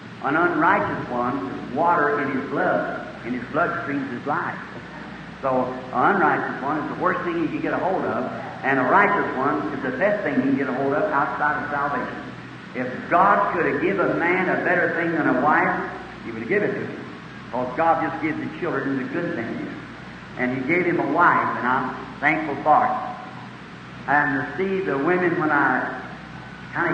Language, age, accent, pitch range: English, 60-79, American, 150-205 Hz